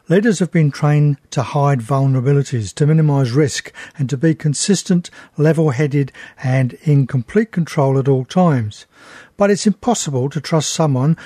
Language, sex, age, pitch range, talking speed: English, male, 60-79, 140-170 Hz, 150 wpm